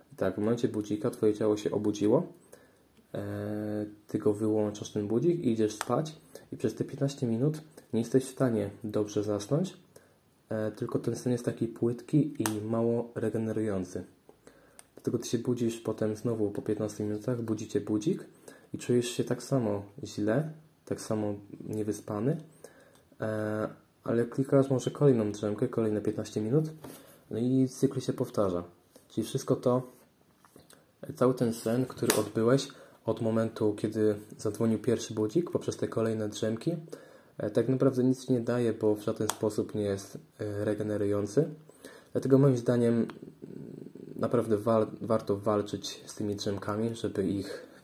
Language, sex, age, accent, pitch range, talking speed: Polish, male, 20-39, native, 105-125 Hz, 140 wpm